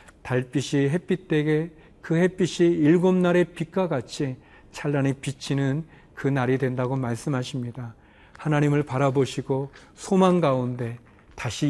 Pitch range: 135-165 Hz